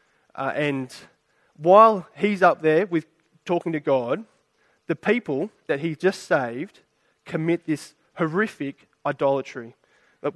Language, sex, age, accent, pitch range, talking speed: English, male, 20-39, Australian, 145-175 Hz, 120 wpm